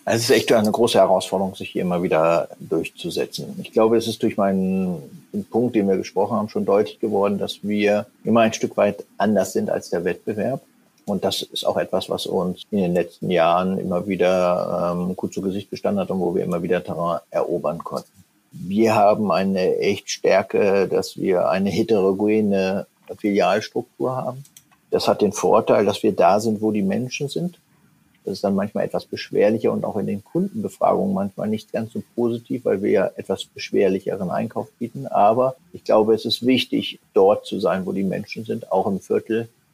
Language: German